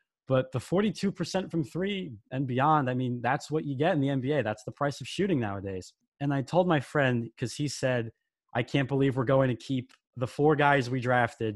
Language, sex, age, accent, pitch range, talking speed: English, male, 20-39, American, 120-150 Hz, 220 wpm